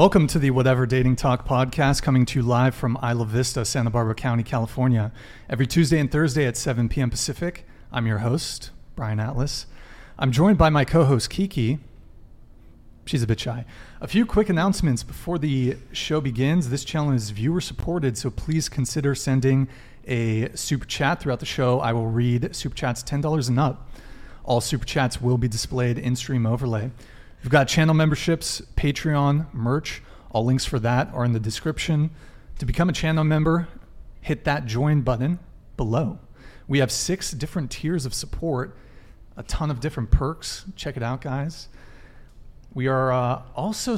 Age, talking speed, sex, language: 30-49, 170 wpm, male, English